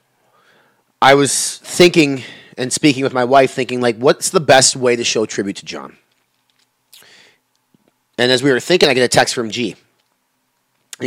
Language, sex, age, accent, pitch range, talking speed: English, male, 30-49, American, 120-155 Hz, 170 wpm